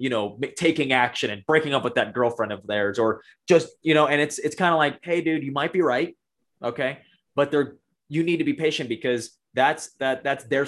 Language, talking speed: English, 230 wpm